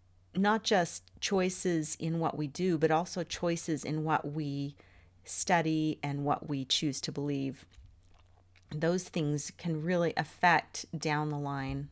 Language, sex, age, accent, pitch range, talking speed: English, female, 40-59, American, 140-165 Hz, 140 wpm